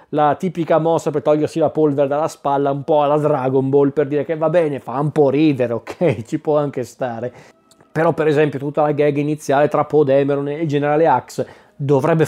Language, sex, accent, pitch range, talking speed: Italian, male, native, 135-165 Hz, 205 wpm